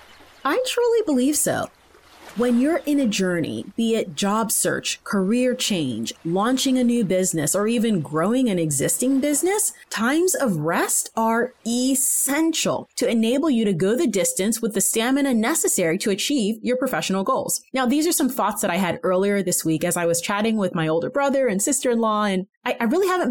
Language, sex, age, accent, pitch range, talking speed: English, female, 30-49, American, 185-260 Hz, 185 wpm